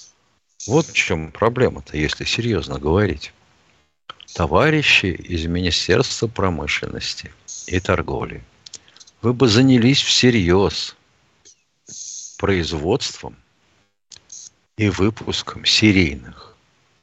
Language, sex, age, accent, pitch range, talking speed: Russian, male, 50-69, native, 90-125 Hz, 75 wpm